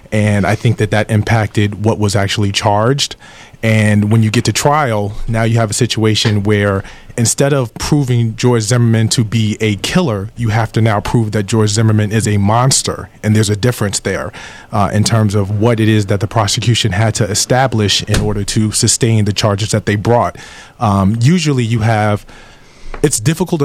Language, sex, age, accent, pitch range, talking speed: English, male, 30-49, American, 105-125 Hz, 190 wpm